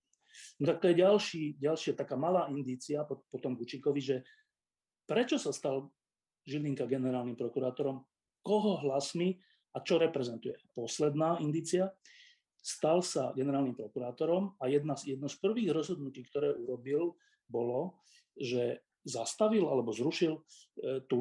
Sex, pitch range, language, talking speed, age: male, 135-175 Hz, Slovak, 115 wpm, 40-59